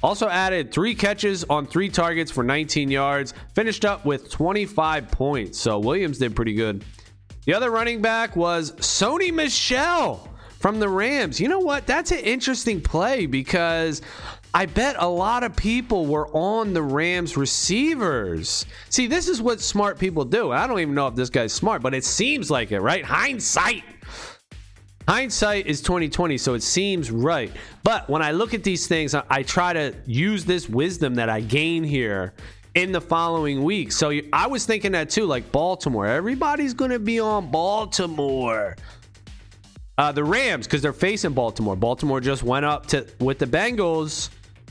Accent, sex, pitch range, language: American, male, 130-195 Hz, English